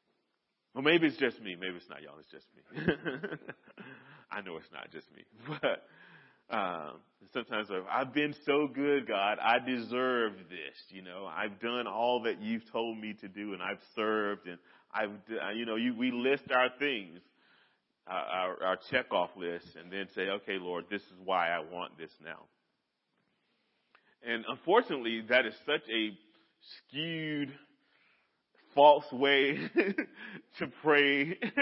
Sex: male